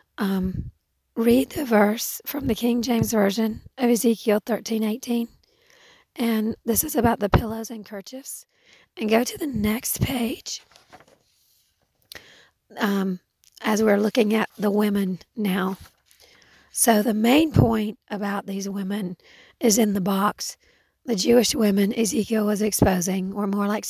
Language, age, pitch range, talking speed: English, 40-59, 190-225 Hz, 140 wpm